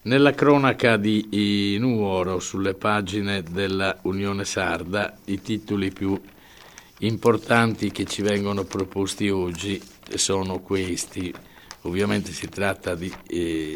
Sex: male